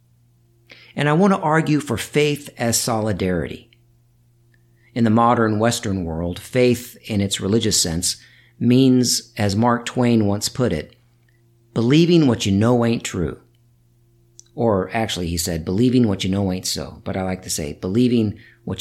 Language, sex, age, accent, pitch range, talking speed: English, male, 50-69, American, 100-130 Hz, 155 wpm